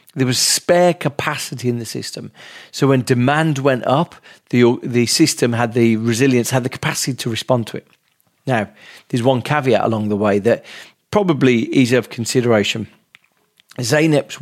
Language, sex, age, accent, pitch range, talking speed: English, male, 40-59, British, 120-150 Hz, 160 wpm